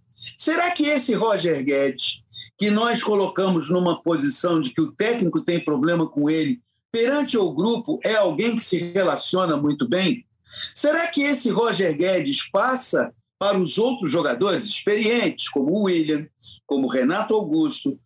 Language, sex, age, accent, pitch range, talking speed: Portuguese, male, 50-69, Brazilian, 155-250 Hz, 150 wpm